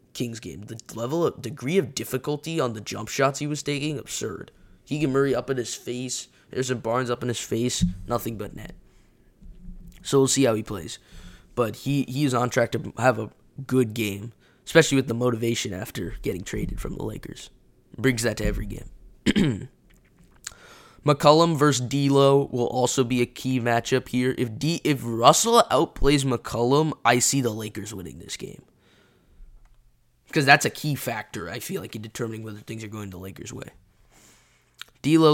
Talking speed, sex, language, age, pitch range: 180 wpm, male, English, 10-29, 115-135 Hz